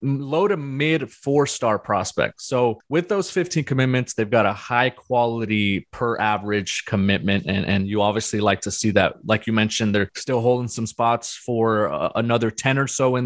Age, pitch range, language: 20-39, 110-130 Hz, English